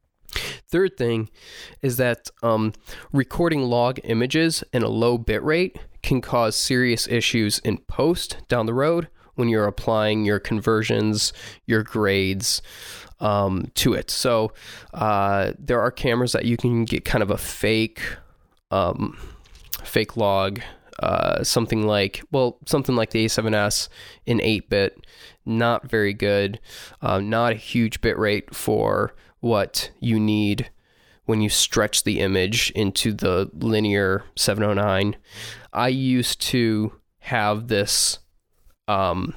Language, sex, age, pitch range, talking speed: English, male, 20-39, 105-120 Hz, 130 wpm